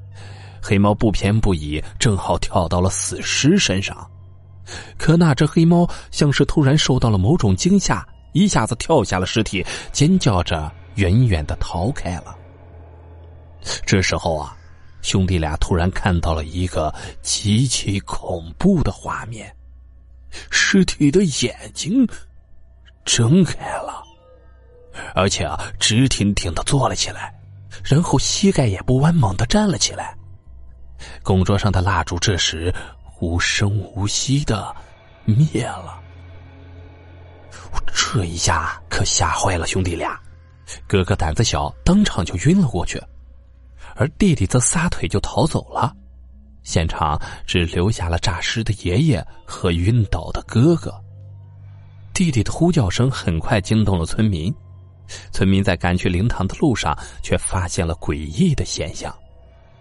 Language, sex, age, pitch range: Chinese, male, 30-49, 85-115 Hz